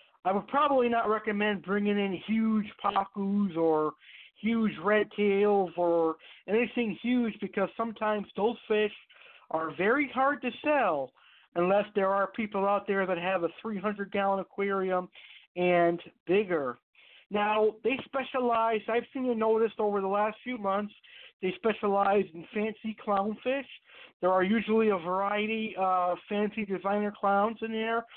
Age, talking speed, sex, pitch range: 50-69, 145 wpm, male, 185-220 Hz